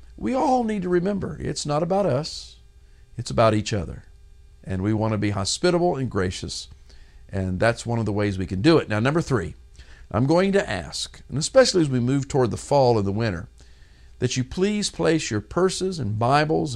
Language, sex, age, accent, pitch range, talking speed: English, male, 50-69, American, 90-155 Hz, 205 wpm